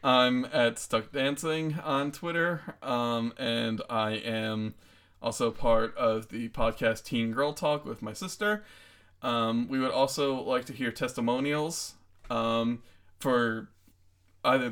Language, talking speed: English, 130 wpm